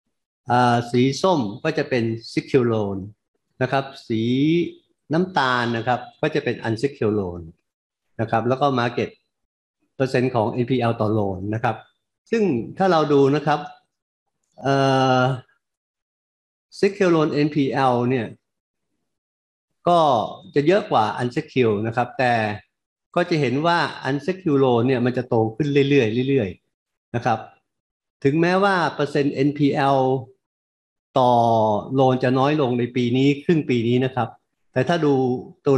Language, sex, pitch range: Thai, male, 120-150 Hz